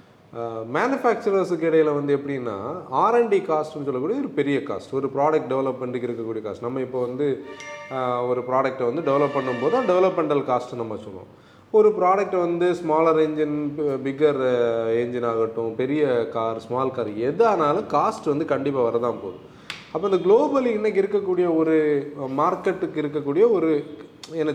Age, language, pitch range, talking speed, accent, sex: 30-49, Tamil, 130-175 Hz, 135 wpm, native, male